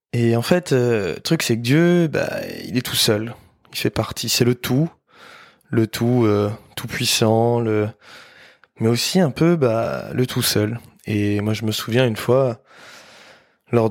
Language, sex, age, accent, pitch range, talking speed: French, male, 20-39, French, 110-135 Hz, 180 wpm